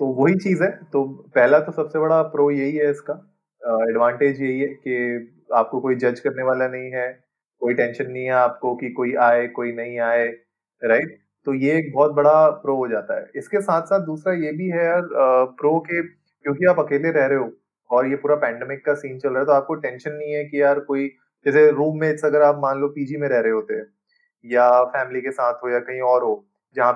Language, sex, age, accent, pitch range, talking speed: Hindi, male, 20-39, native, 125-150 Hz, 230 wpm